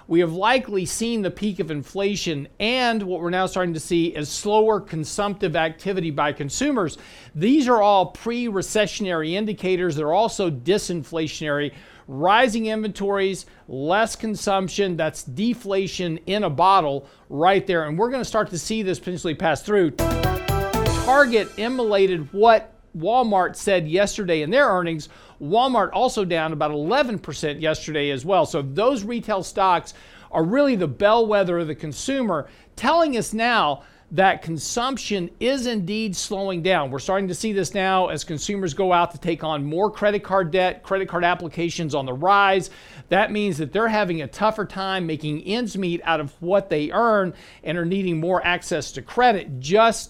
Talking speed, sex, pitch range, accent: 160 wpm, male, 165-205 Hz, American